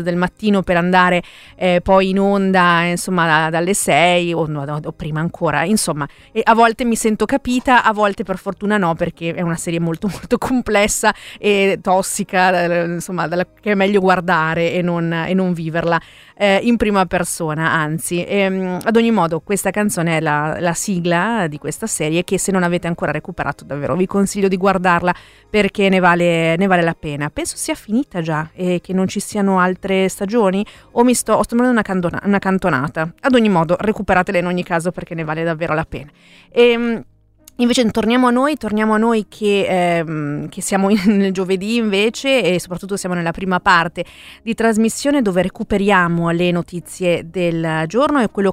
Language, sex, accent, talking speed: Italian, female, native, 180 wpm